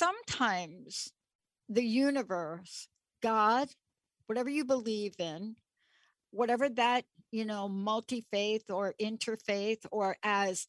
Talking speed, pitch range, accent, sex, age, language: 95 wpm, 190-235 Hz, American, female, 60-79, English